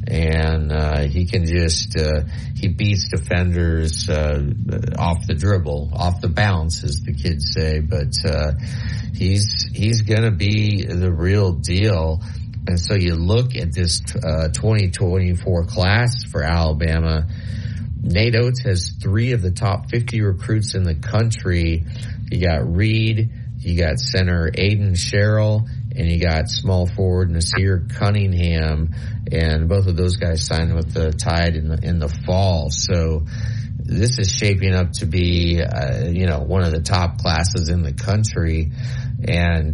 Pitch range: 85-110 Hz